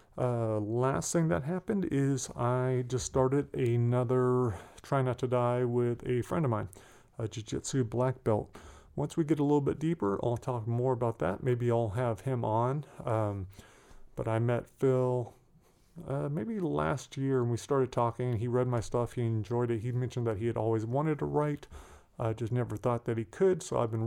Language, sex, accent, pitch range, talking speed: English, male, American, 115-130 Hz, 200 wpm